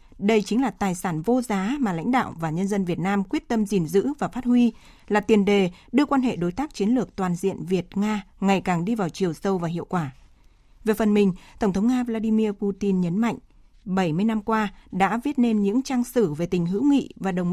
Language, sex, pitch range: Vietnamese, female, 195-240 Hz